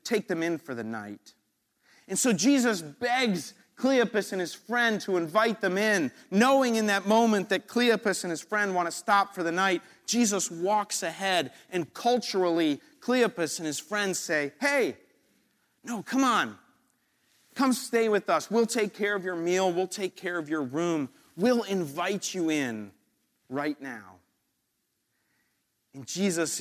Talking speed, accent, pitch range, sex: 160 wpm, American, 150-215 Hz, male